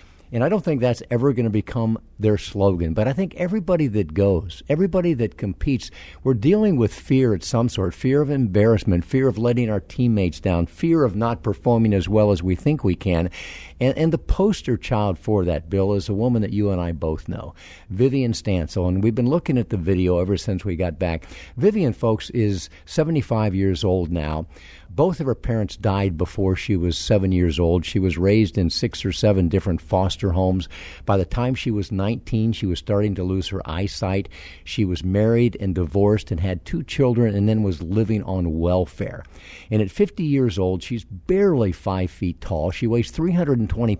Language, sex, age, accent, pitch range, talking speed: English, male, 50-69, American, 90-115 Hz, 200 wpm